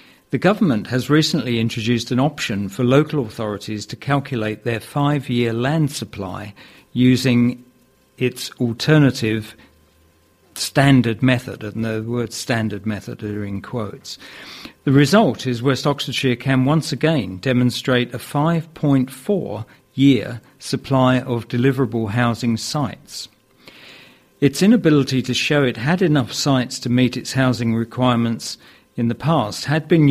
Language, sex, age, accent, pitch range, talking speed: English, male, 50-69, British, 115-140 Hz, 125 wpm